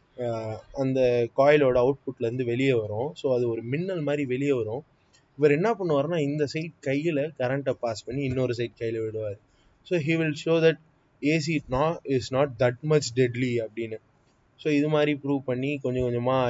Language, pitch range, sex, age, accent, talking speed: Tamil, 120-145 Hz, male, 20-39, native, 165 wpm